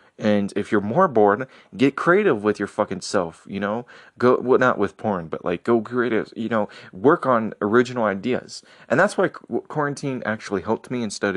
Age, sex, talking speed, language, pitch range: 20-39, male, 190 wpm, English, 95-115 Hz